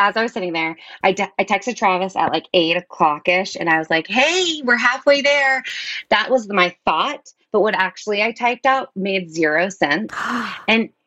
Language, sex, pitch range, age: English, female, 165-220 Hz, 20-39